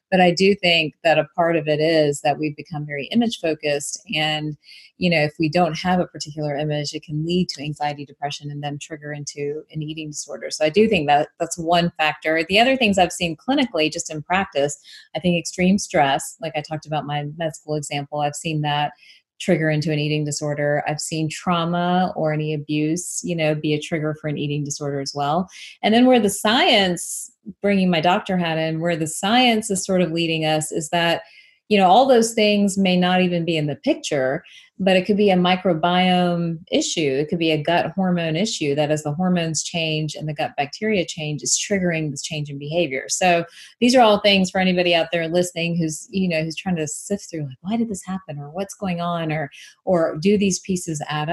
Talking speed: 220 wpm